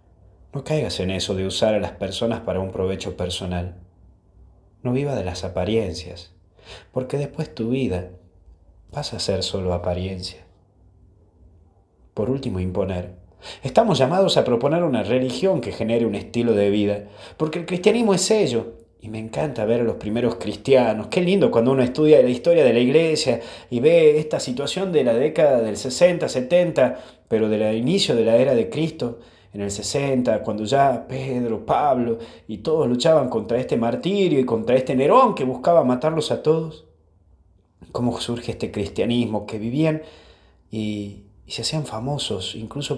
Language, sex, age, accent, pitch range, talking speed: Spanish, male, 30-49, Argentinian, 95-130 Hz, 165 wpm